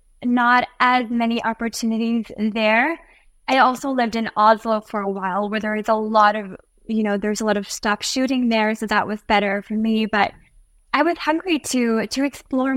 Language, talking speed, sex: English, 190 wpm, female